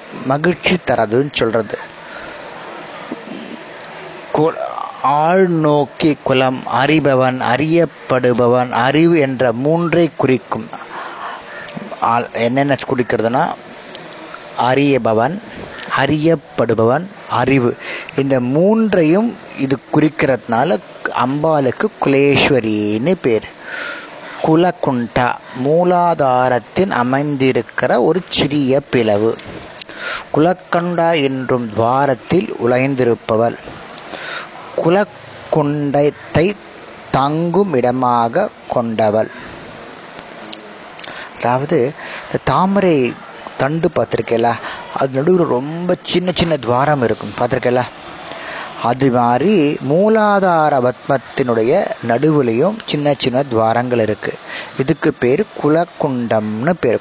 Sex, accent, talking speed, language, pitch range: male, native, 60 wpm, Tamil, 120-160 Hz